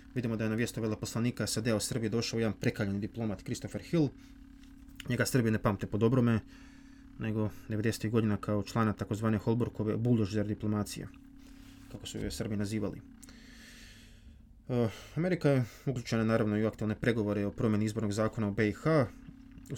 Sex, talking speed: male, 155 wpm